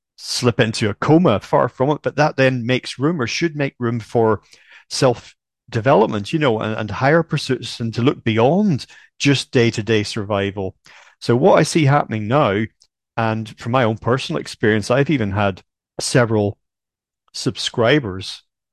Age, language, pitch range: 40-59, English, 105-130 Hz